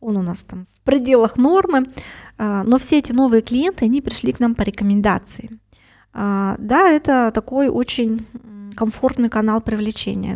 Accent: native